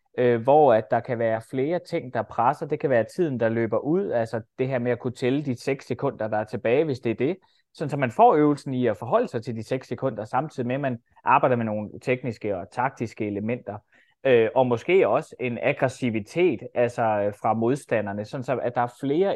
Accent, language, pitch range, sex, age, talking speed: native, Danish, 110-135 Hz, male, 20-39, 210 wpm